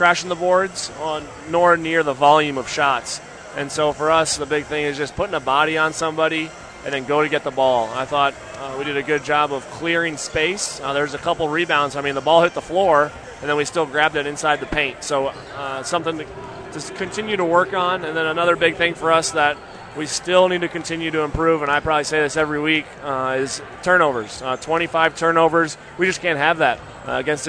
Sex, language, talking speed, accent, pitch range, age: male, English, 235 wpm, American, 145-170 Hz, 20-39